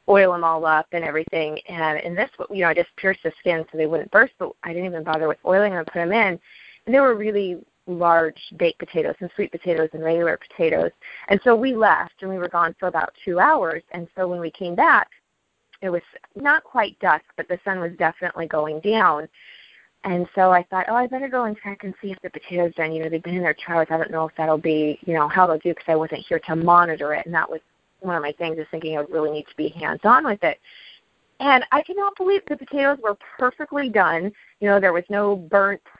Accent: American